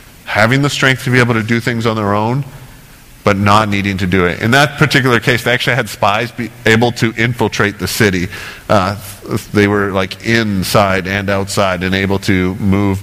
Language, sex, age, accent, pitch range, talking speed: English, male, 40-59, American, 105-130 Hz, 200 wpm